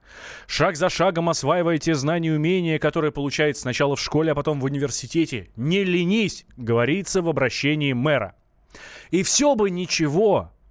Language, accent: Russian, native